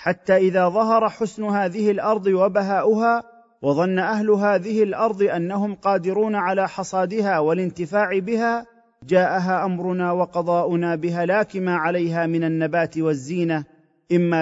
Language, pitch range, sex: Arabic, 170-210 Hz, male